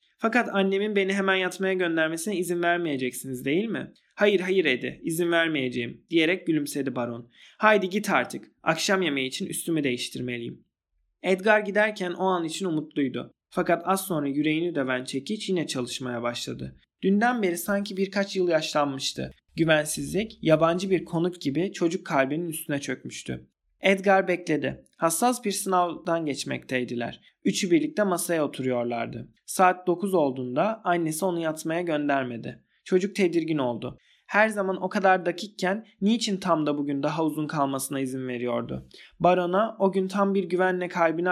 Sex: male